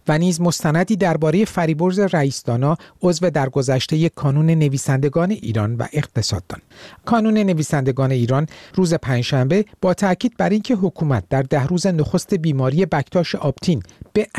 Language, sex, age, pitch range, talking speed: Persian, male, 50-69, 140-190 Hz, 125 wpm